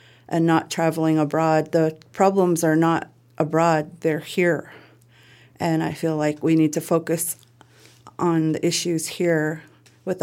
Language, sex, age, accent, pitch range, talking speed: English, female, 40-59, American, 150-165 Hz, 140 wpm